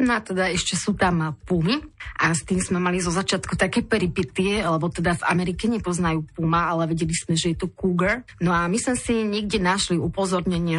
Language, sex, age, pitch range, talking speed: Slovak, female, 30-49, 160-185 Hz, 200 wpm